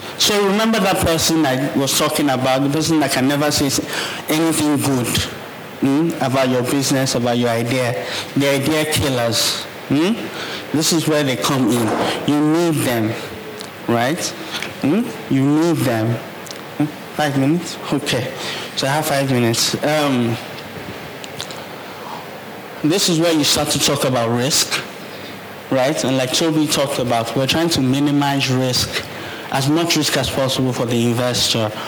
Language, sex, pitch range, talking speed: English, male, 125-150 Hz, 145 wpm